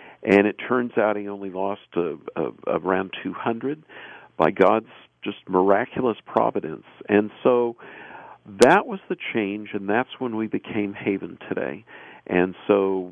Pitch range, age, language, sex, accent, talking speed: 100-130 Hz, 50-69, English, male, American, 135 wpm